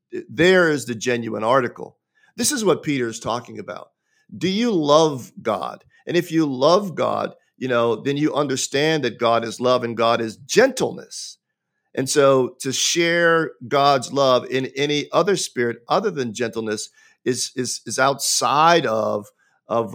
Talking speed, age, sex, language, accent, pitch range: 160 wpm, 50-69, male, English, American, 115-145 Hz